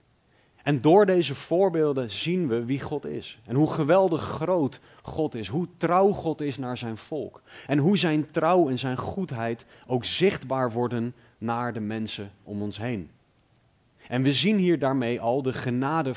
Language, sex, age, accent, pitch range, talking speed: Dutch, male, 30-49, Dutch, 120-155 Hz, 170 wpm